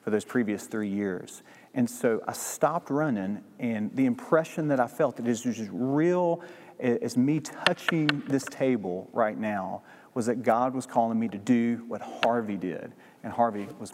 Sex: male